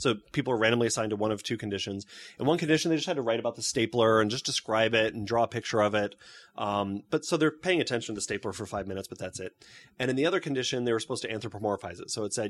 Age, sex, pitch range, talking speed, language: 20-39, male, 105-140 Hz, 300 wpm, English